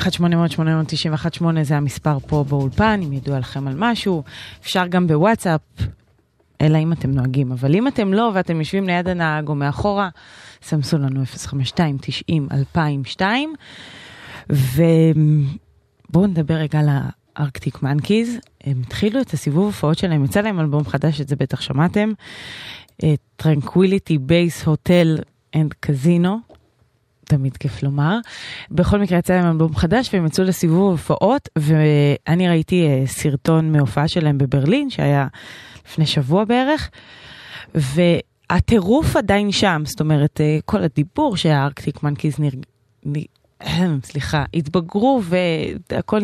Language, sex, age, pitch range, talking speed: Hebrew, female, 20-39, 145-180 Hz, 120 wpm